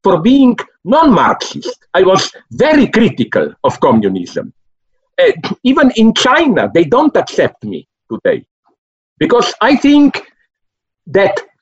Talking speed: 120 wpm